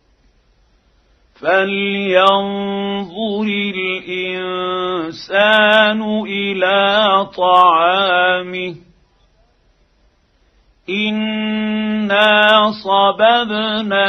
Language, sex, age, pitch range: Arabic, male, 50-69, 170-200 Hz